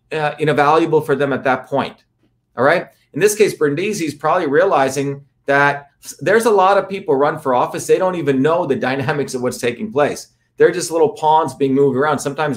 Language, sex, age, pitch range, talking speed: English, male, 40-59, 130-165 Hz, 210 wpm